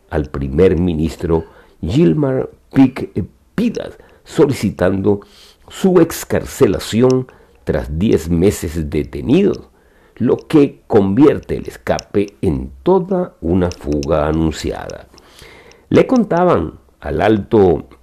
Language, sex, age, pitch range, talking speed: Spanish, male, 50-69, 75-125 Hz, 85 wpm